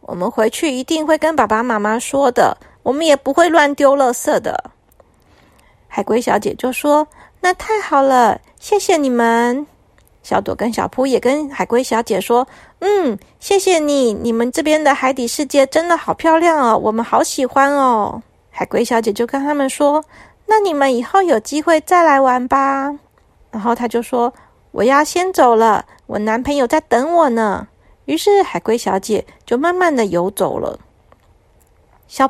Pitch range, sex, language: 230-310 Hz, female, Chinese